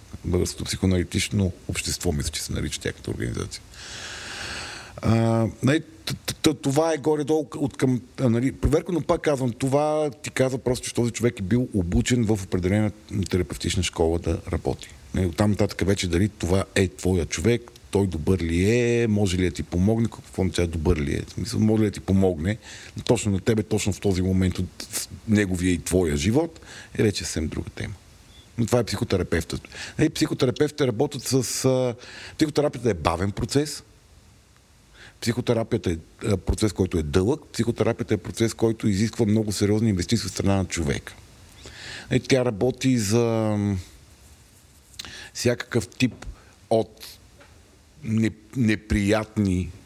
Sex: male